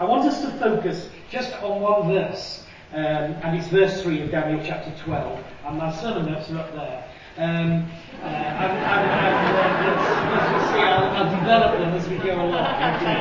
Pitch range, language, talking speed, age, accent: 155-205 Hz, English, 180 wpm, 40-59, British